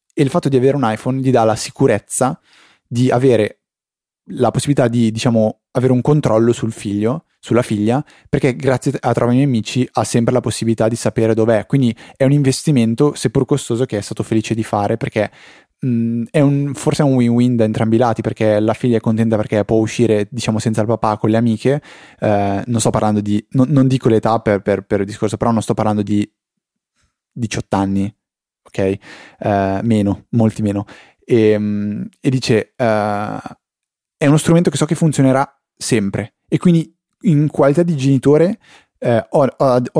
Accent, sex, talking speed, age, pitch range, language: native, male, 180 wpm, 20-39, 110-135 Hz, Italian